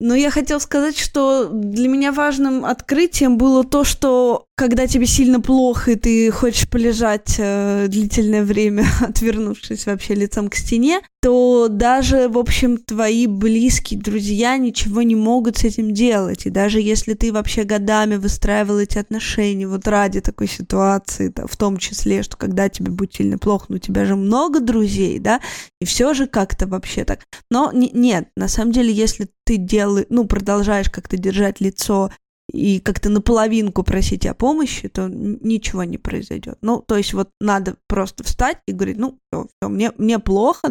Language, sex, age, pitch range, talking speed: Russian, female, 20-39, 195-235 Hz, 170 wpm